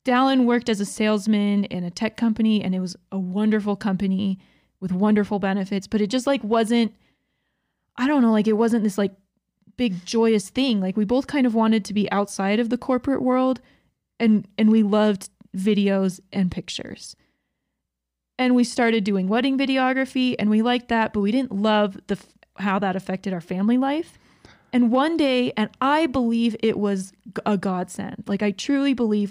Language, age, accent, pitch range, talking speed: English, 20-39, American, 205-250 Hz, 180 wpm